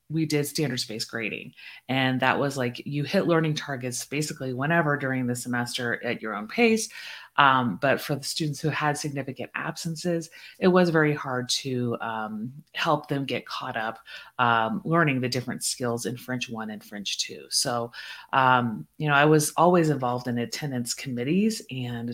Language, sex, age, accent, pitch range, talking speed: English, female, 30-49, American, 125-155 Hz, 175 wpm